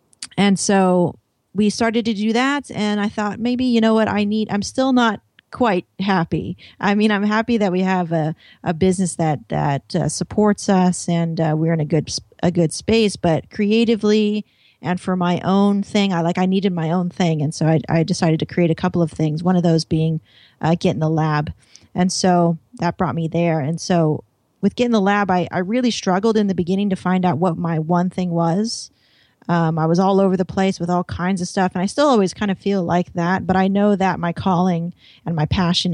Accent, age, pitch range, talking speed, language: American, 30-49, 165-205 Hz, 230 wpm, English